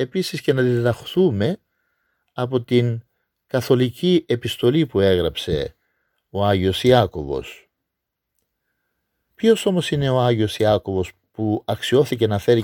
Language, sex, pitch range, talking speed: Greek, male, 100-150 Hz, 110 wpm